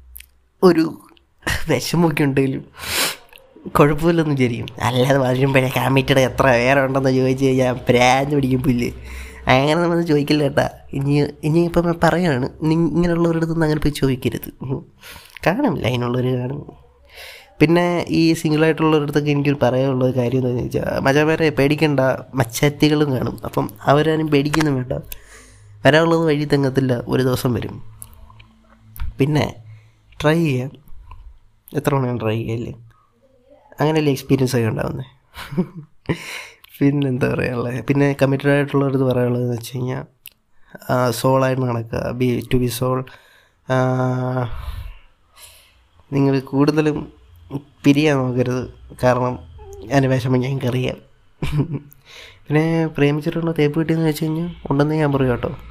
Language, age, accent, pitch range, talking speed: Malayalam, 20-39, native, 125-150 Hz, 105 wpm